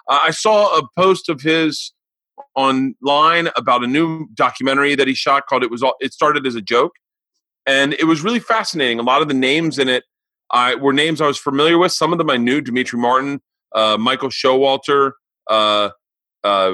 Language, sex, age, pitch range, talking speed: English, male, 30-49, 120-165 Hz, 190 wpm